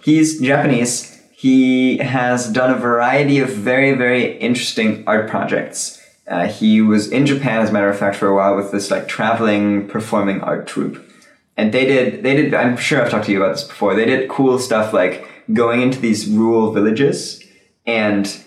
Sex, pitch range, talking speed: male, 100-125 Hz, 190 wpm